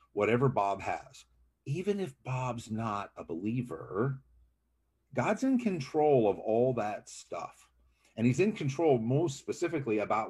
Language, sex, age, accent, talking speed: English, male, 50-69, American, 135 wpm